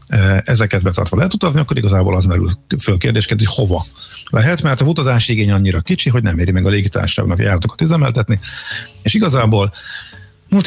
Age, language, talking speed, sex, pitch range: 50-69, Hungarian, 165 wpm, male, 95-115 Hz